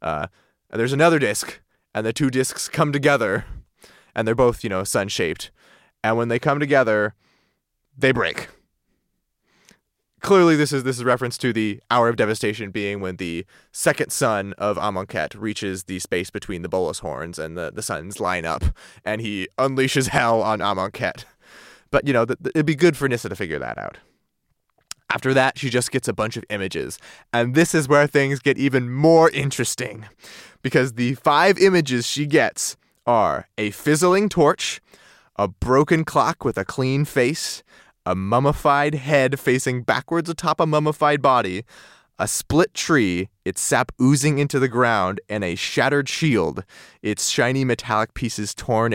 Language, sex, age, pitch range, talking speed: English, male, 20-39, 110-145 Hz, 170 wpm